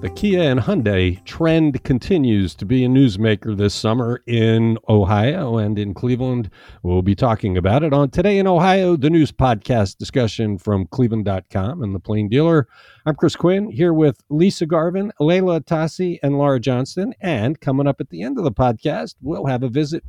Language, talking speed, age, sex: English, 180 wpm, 50-69, male